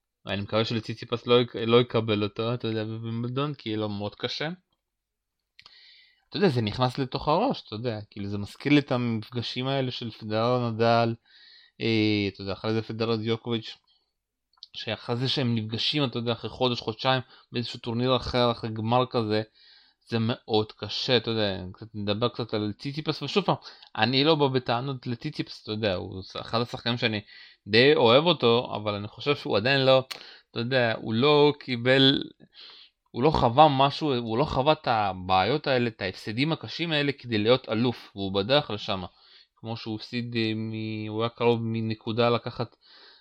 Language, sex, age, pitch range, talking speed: Hebrew, male, 20-39, 110-130 Hz, 160 wpm